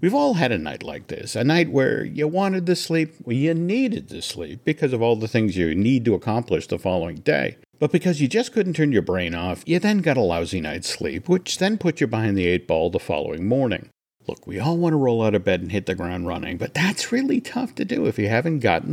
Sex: male